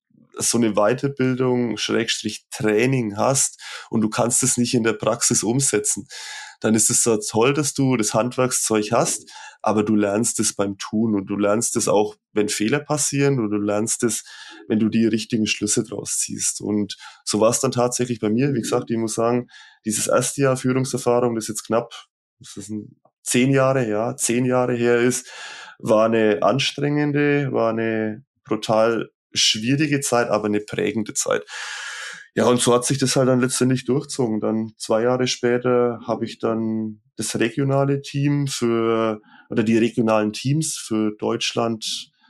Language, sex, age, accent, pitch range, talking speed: German, male, 20-39, German, 110-130 Hz, 170 wpm